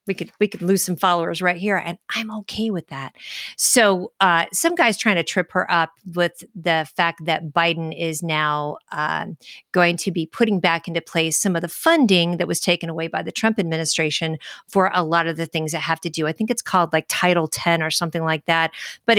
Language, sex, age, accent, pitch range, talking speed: English, female, 40-59, American, 170-215 Hz, 225 wpm